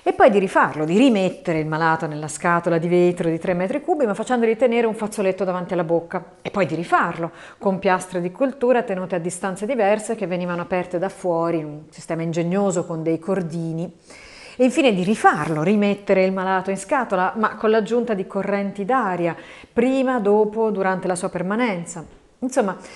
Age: 40-59